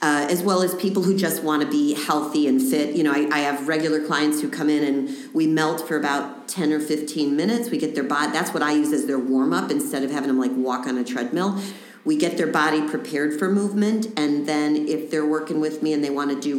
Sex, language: female, English